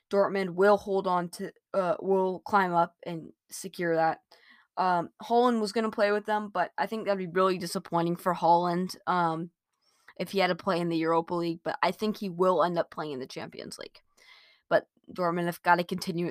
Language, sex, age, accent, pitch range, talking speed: English, female, 20-39, American, 170-210 Hz, 205 wpm